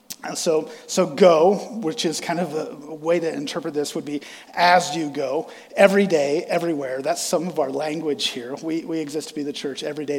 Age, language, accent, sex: 40-59, English, American, male